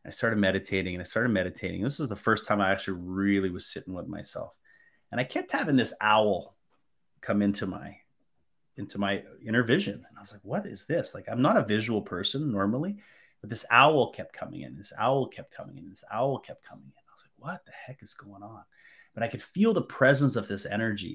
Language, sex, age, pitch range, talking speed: English, male, 30-49, 100-120 Hz, 225 wpm